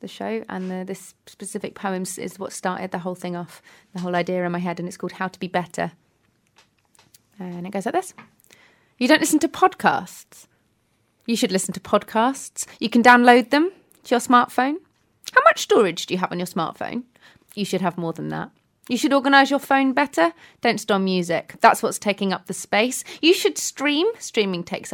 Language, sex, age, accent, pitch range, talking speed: English, female, 30-49, British, 200-290 Hz, 200 wpm